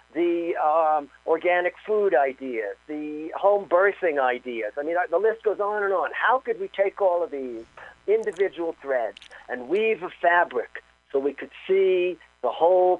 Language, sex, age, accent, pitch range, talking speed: English, male, 50-69, American, 140-190 Hz, 165 wpm